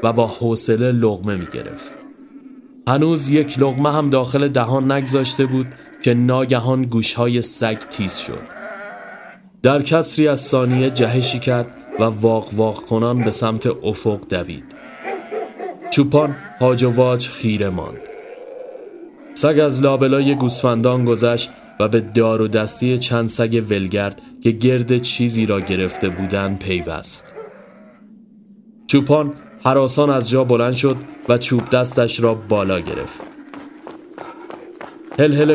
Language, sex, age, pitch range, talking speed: Persian, male, 30-49, 115-150 Hz, 125 wpm